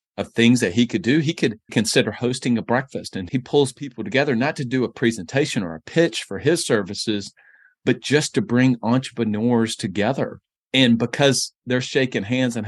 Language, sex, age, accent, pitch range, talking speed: English, male, 40-59, American, 105-130 Hz, 190 wpm